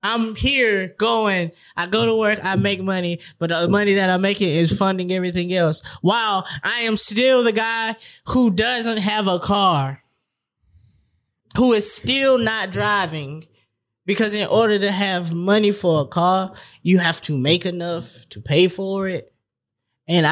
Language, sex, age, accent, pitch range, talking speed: English, male, 20-39, American, 140-195 Hz, 160 wpm